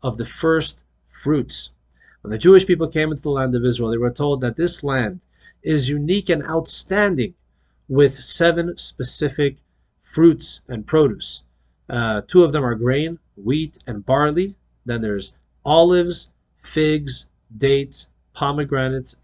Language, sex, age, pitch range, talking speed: English, male, 40-59, 115-160 Hz, 140 wpm